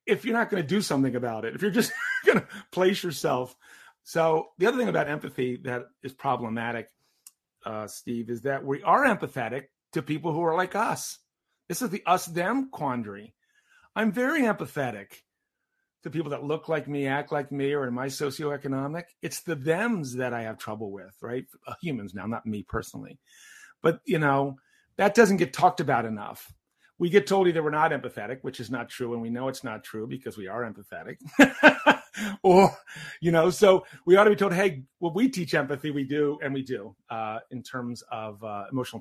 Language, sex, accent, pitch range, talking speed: English, male, American, 120-175 Hz, 195 wpm